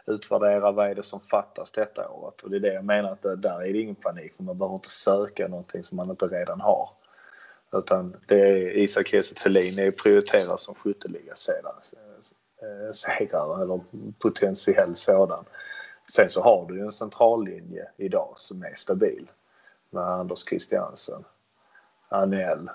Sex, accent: male, Swedish